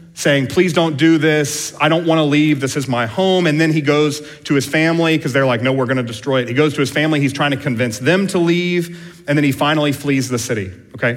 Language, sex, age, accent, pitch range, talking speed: English, male, 40-59, American, 120-150 Hz, 260 wpm